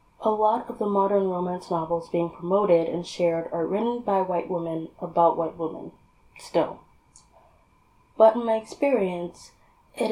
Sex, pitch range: female, 170-205 Hz